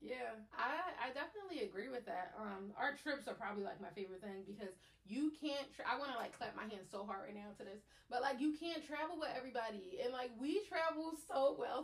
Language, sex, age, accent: English, female, 30-49, American